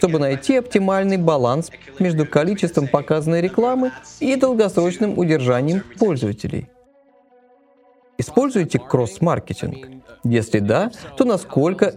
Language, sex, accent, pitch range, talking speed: Russian, male, native, 135-215 Hz, 90 wpm